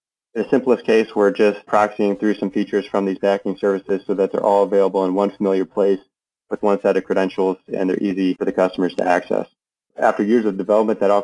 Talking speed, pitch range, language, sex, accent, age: 220 wpm, 95-105 Hz, English, male, American, 30-49